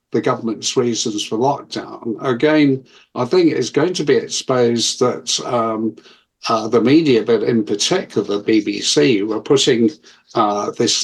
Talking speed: 145 wpm